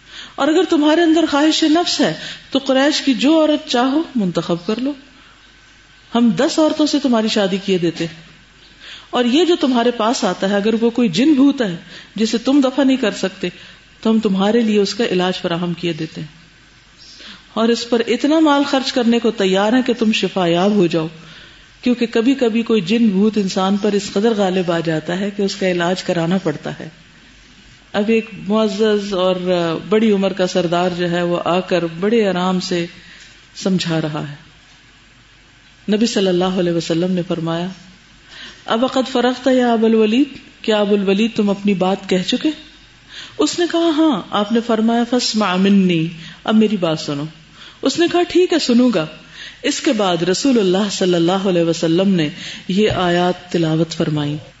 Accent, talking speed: Indian, 145 wpm